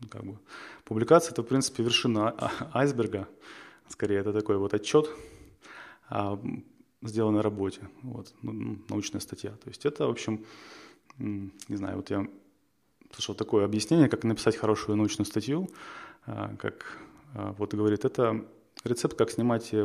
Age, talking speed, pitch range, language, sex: 20-39, 145 wpm, 105-125 Hz, Ukrainian, male